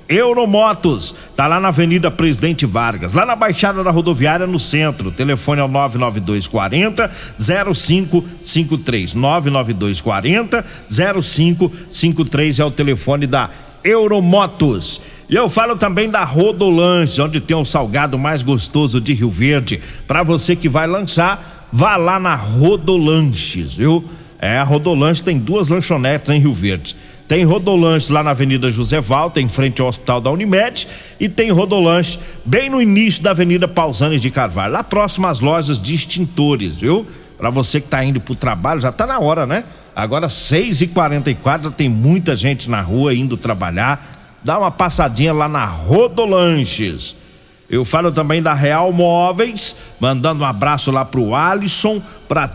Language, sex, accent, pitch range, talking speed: Portuguese, male, Brazilian, 135-175 Hz, 155 wpm